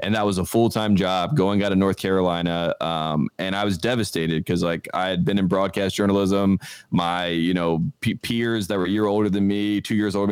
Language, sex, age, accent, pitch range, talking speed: English, male, 20-39, American, 90-100 Hz, 225 wpm